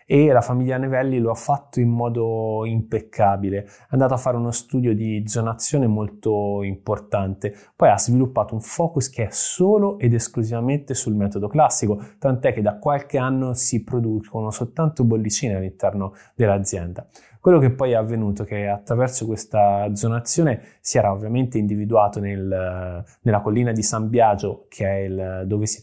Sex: male